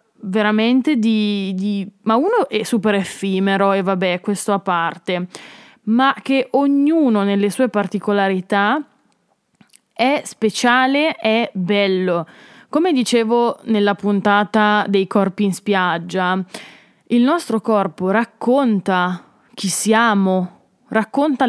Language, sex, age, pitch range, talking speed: Italian, female, 20-39, 195-235 Hz, 105 wpm